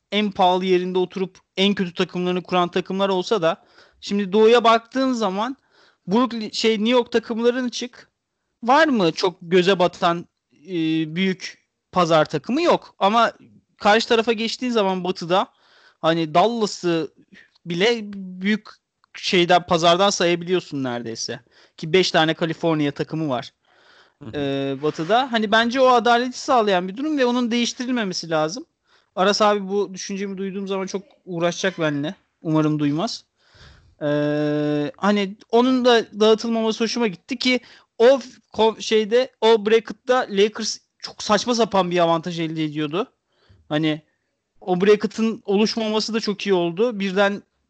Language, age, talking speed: Turkish, 40-59, 130 wpm